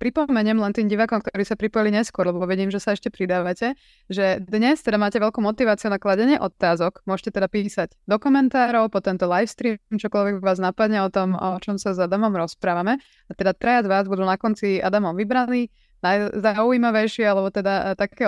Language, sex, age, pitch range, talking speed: Slovak, female, 20-39, 185-220 Hz, 185 wpm